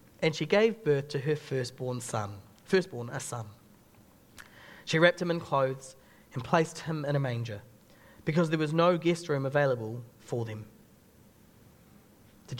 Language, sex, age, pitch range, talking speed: English, male, 30-49, 145-230 Hz, 150 wpm